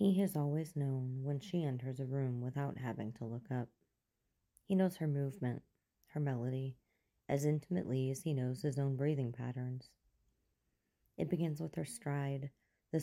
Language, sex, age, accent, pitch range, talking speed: English, female, 30-49, American, 125-145 Hz, 160 wpm